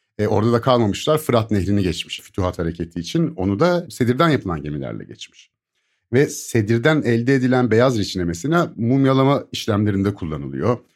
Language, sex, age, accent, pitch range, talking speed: Turkish, male, 50-69, native, 95-135 Hz, 135 wpm